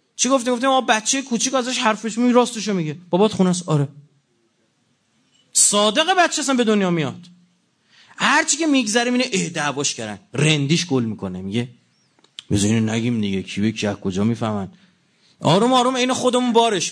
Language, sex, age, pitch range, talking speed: Persian, male, 30-49, 185-260 Hz, 150 wpm